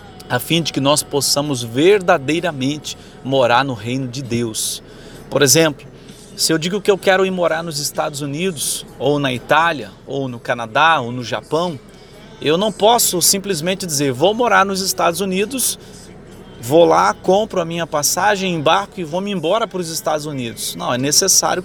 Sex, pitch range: male, 135-190 Hz